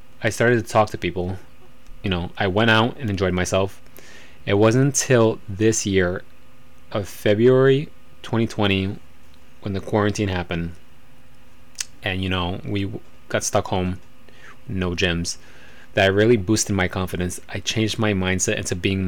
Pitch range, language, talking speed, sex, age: 95-115 Hz, English, 150 wpm, male, 20-39